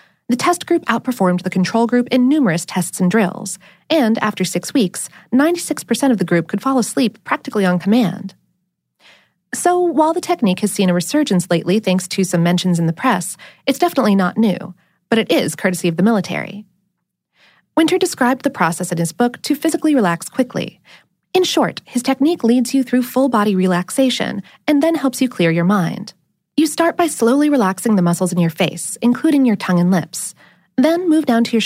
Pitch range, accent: 185-270 Hz, American